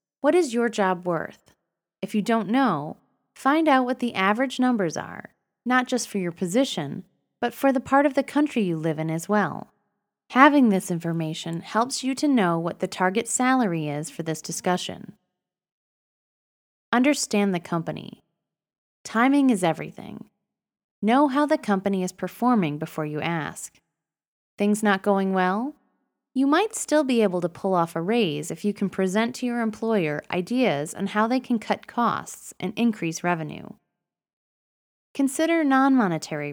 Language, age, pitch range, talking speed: English, 20-39, 175-255 Hz, 160 wpm